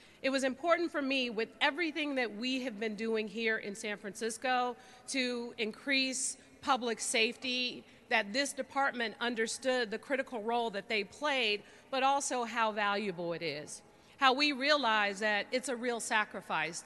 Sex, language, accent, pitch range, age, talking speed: female, English, American, 215-250 Hz, 40-59, 155 wpm